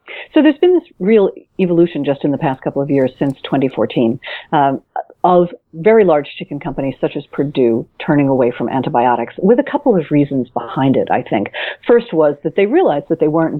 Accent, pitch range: American, 135-180 Hz